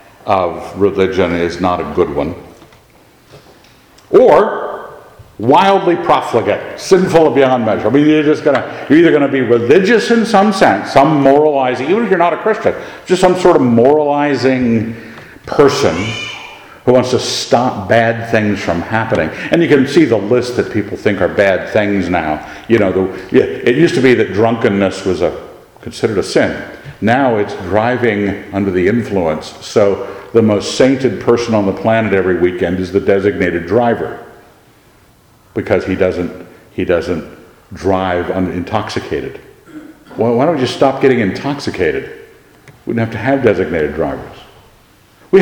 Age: 50-69